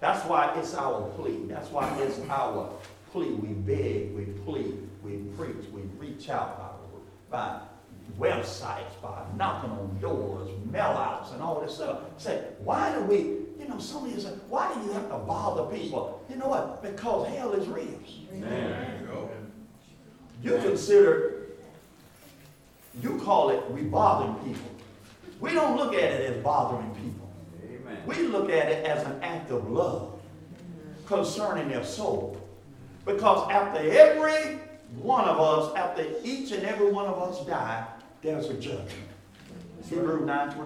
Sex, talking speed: male, 150 wpm